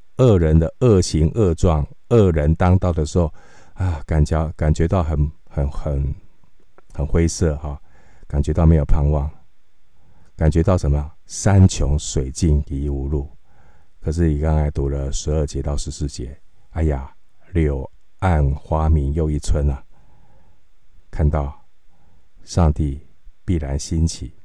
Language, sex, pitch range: Chinese, male, 75-90 Hz